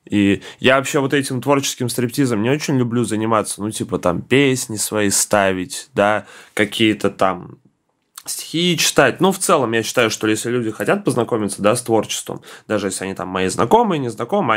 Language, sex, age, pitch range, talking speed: Russian, male, 20-39, 105-135 Hz, 175 wpm